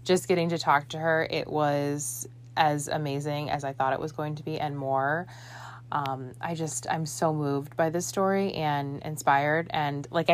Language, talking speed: English, 190 wpm